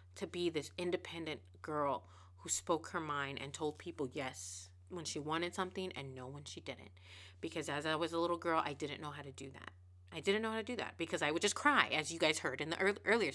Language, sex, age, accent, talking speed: English, female, 30-49, American, 245 wpm